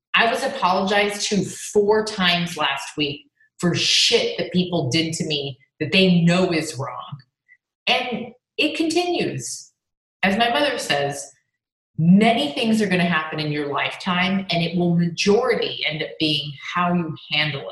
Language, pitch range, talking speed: English, 155-215 Hz, 155 wpm